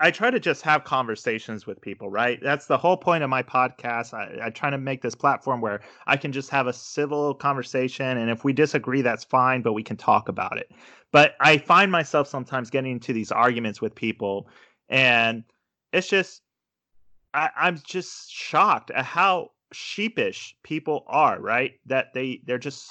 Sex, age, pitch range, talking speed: male, 30-49, 120-155 Hz, 185 wpm